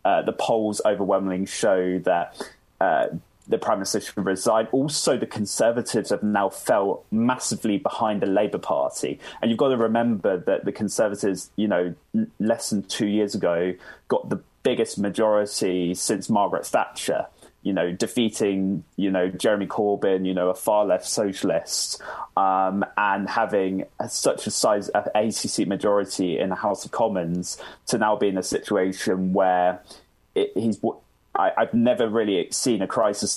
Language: English